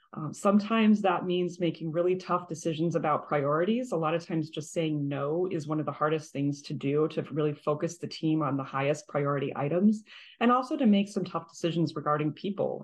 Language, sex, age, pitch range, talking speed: English, female, 30-49, 150-180 Hz, 205 wpm